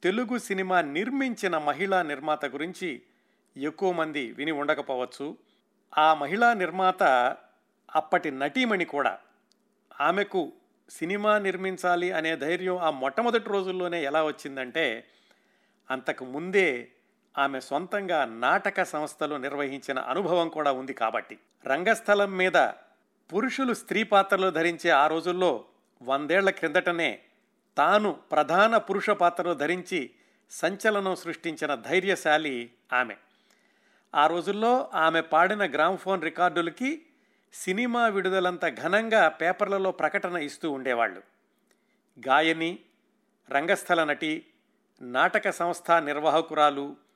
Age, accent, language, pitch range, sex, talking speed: 50-69, native, Telugu, 150-195 Hz, male, 95 wpm